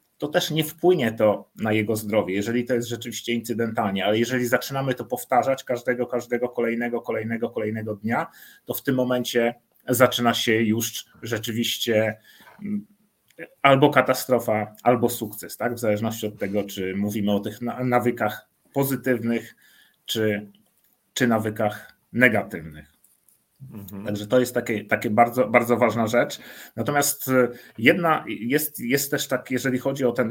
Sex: male